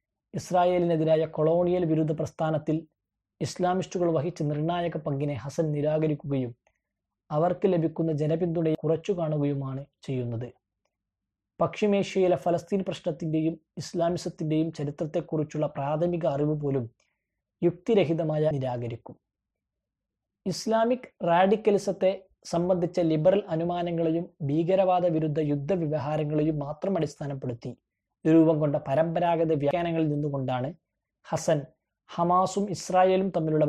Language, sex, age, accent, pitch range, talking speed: Malayalam, male, 20-39, native, 145-175 Hz, 80 wpm